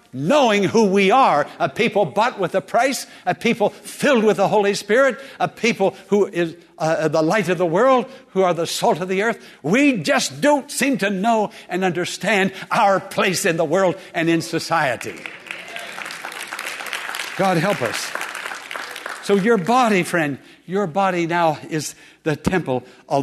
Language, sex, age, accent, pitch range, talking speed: English, male, 60-79, American, 145-195 Hz, 165 wpm